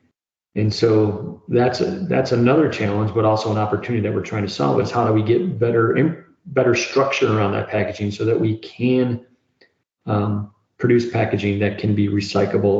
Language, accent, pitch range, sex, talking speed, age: English, American, 105-115 Hz, male, 180 wpm, 40-59